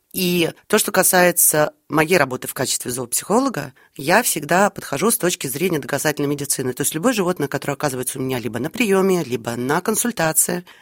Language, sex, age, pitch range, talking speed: Russian, female, 30-49, 150-210 Hz, 170 wpm